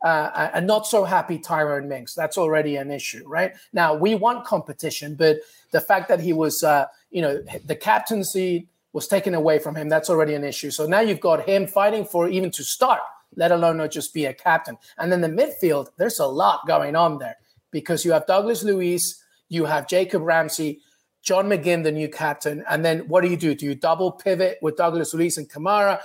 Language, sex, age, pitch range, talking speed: English, male, 30-49, 155-195 Hz, 205 wpm